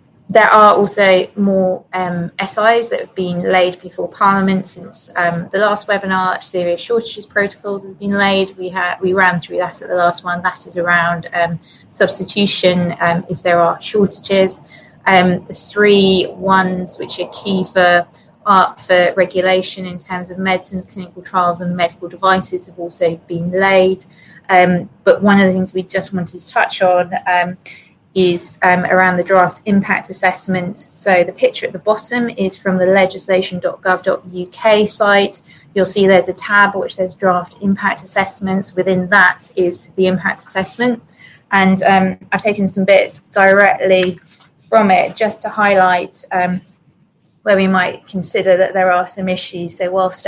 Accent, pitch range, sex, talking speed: British, 180-195 Hz, female, 165 wpm